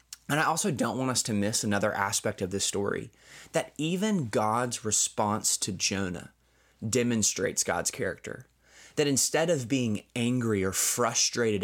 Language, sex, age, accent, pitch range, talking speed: English, male, 20-39, American, 100-120 Hz, 150 wpm